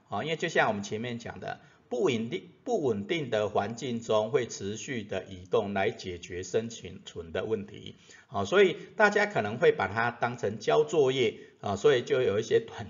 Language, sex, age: Chinese, male, 50-69